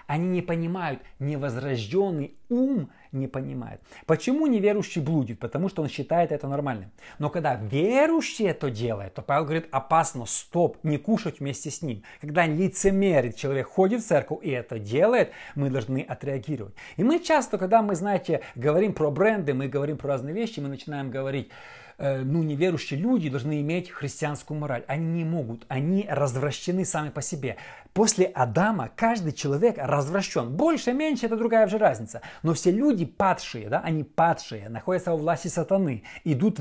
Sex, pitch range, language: male, 135-185 Hz, Russian